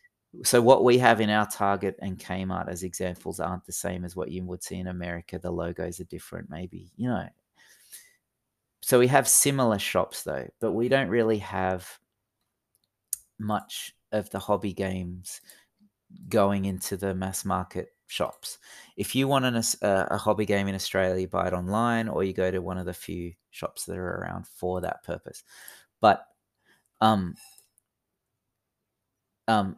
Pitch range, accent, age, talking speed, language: 95-115 Hz, Australian, 30-49, 160 wpm, English